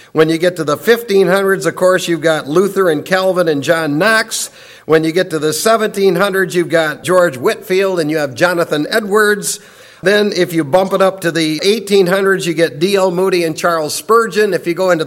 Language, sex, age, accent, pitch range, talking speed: English, male, 50-69, American, 170-215 Hz, 205 wpm